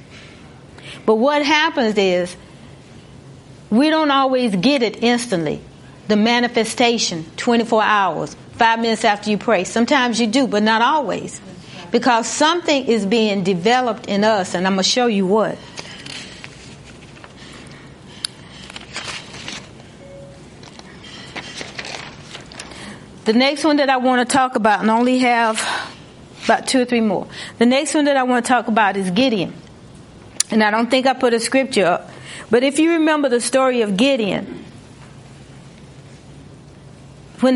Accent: American